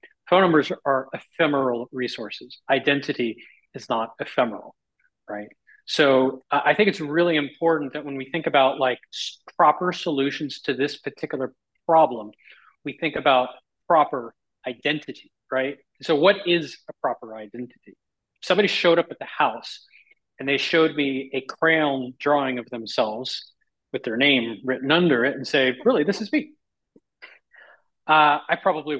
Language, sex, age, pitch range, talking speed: English, male, 30-49, 130-170 Hz, 150 wpm